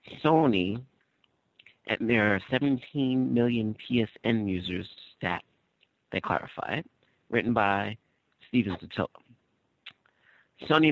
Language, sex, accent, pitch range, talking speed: English, male, American, 95-120 Hz, 95 wpm